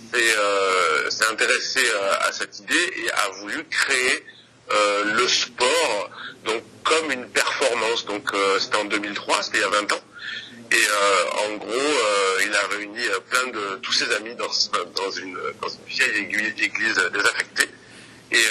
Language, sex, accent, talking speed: French, male, French, 170 wpm